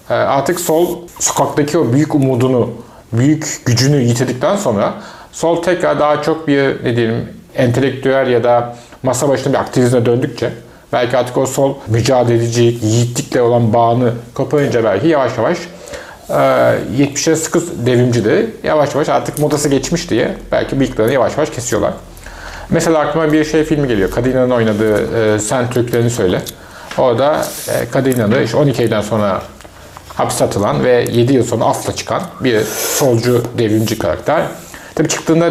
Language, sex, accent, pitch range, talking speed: Turkish, male, native, 120-155 Hz, 140 wpm